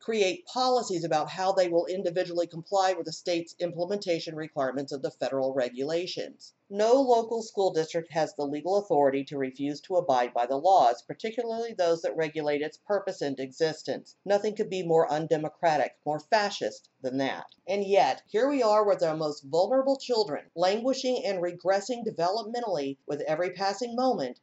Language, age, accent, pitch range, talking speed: English, 50-69, American, 155-215 Hz, 165 wpm